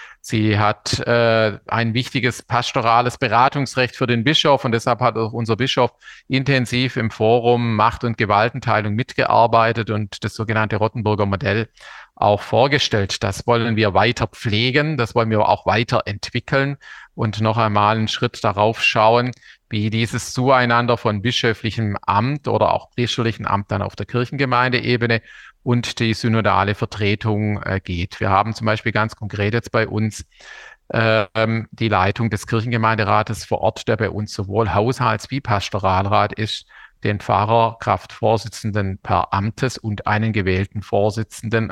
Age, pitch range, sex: 40-59, 105-120 Hz, male